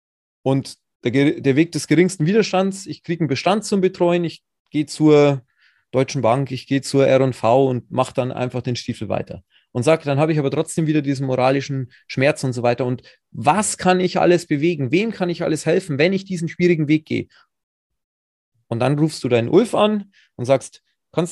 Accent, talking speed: German, 195 wpm